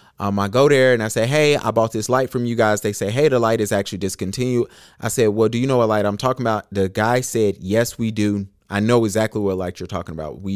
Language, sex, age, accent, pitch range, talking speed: English, male, 30-49, American, 100-130 Hz, 280 wpm